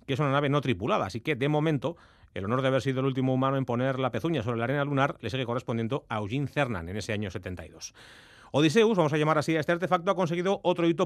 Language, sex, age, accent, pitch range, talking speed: Spanish, male, 30-49, Spanish, 125-170 Hz, 260 wpm